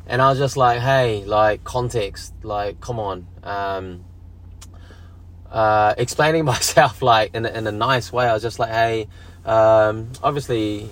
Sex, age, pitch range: male, 20-39, 90-115 Hz